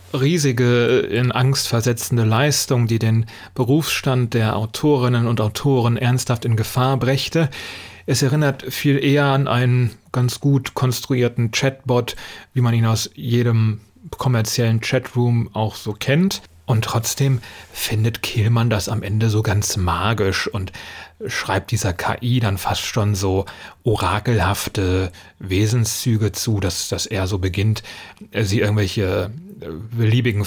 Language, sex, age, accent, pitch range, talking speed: German, male, 30-49, German, 105-125 Hz, 130 wpm